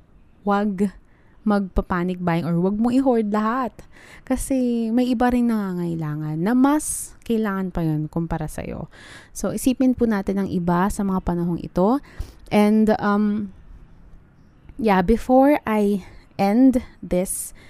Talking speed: 125 wpm